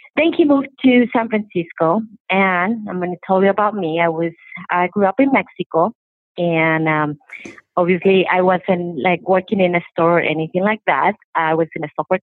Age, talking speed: 30-49, 195 wpm